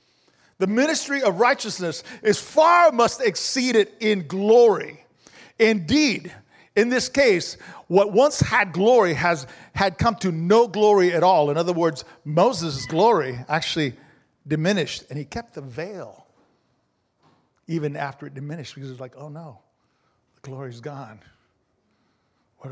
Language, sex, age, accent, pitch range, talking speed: English, male, 50-69, American, 155-240 Hz, 145 wpm